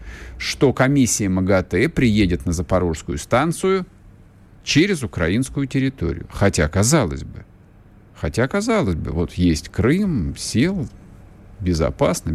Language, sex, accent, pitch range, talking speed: Russian, male, native, 95-145 Hz, 100 wpm